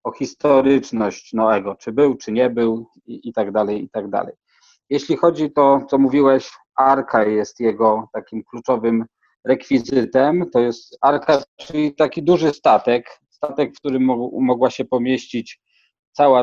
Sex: male